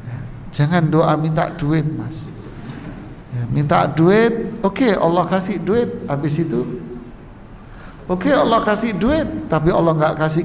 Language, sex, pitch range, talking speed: Indonesian, male, 150-190 Hz, 130 wpm